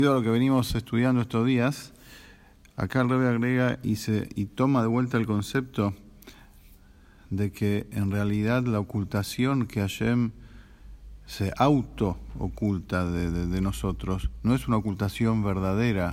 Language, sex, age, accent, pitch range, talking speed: English, male, 50-69, Argentinian, 100-115 Hz, 140 wpm